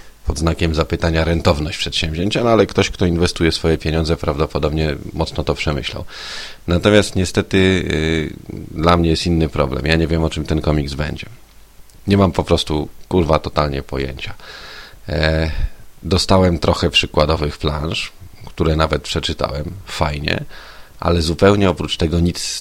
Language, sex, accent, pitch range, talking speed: Polish, male, native, 75-85 Hz, 145 wpm